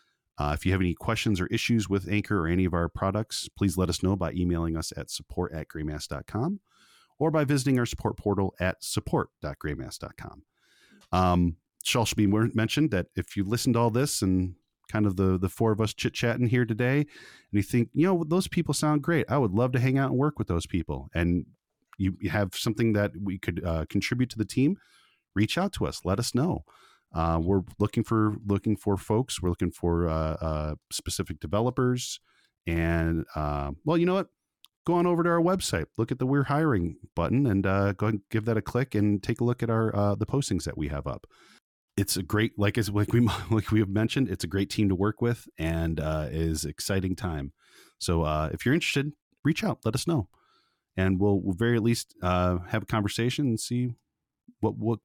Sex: male